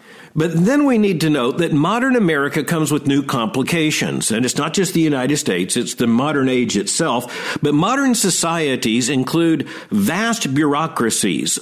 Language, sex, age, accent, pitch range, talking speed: English, male, 50-69, American, 145-205 Hz, 160 wpm